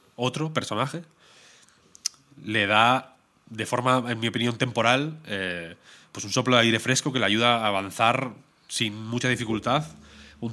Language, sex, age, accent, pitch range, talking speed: Spanish, male, 30-49, Spanish, 100-125 Hz, 150 wpm